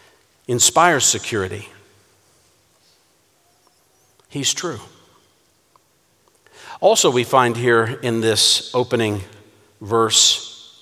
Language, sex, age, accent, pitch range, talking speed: English, male, 50-69, American, 120-160 Hz, 65 wpm